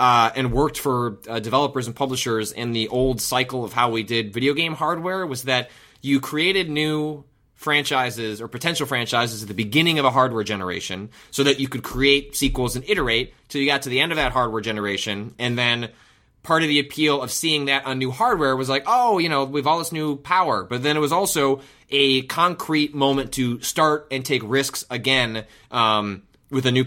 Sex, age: male, 20-39